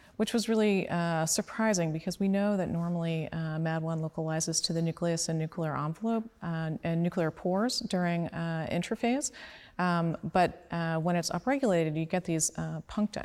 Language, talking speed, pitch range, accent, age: Portuguese, 170 wpm, 160-180 Hz, American, 30-49